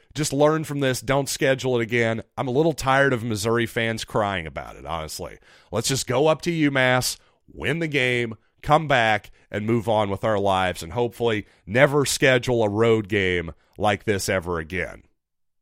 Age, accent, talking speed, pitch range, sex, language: 40-59, American, 180 wpm, 115-155 Hz, male, English